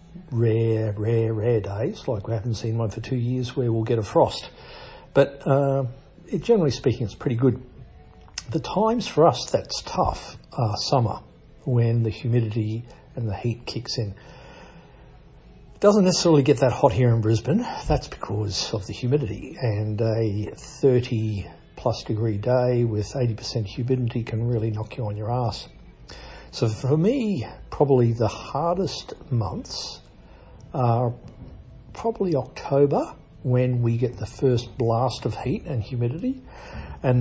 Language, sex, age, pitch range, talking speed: English, male, 60-79, 110-130 Hz, 145 wpm